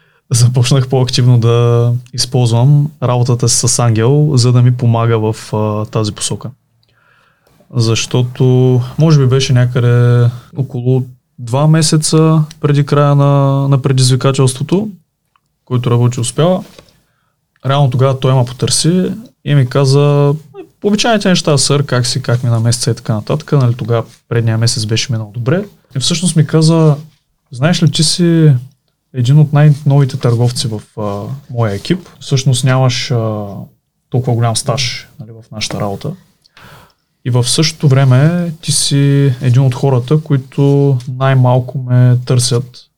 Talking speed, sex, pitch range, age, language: 130 wpm, male, 120-150 Hz, 20-39, Bulgarian